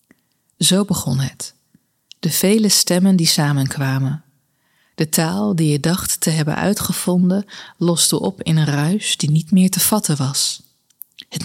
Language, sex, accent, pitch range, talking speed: Dutch, female, Dutch, 155-190 Hz, 145 wpm